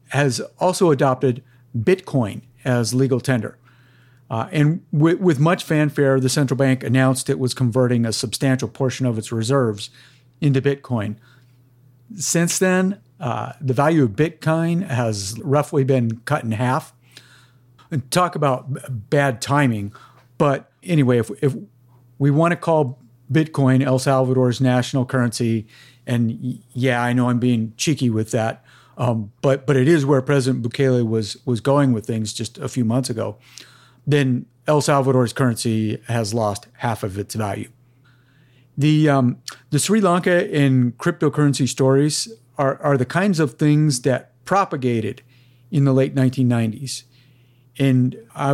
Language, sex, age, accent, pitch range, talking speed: English, male, 50-69, American, 120-140 Hz, 145 wpm